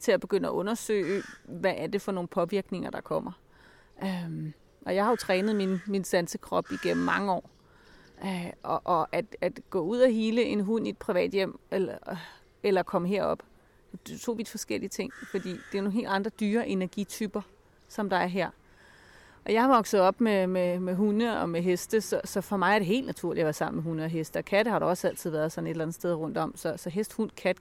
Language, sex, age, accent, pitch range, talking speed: Danish, female, 30-49, native, 185-225 Hz, 235 wpm